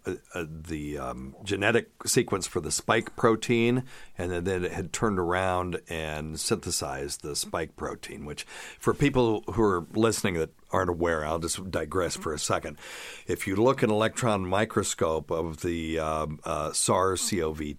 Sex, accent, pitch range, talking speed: male, American, 80-100 Hz, 160 wpm